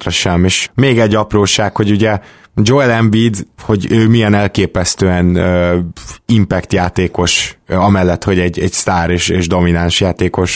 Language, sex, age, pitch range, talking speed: Hungarian, male, 20-39, 90-110 Hz, 140 wpm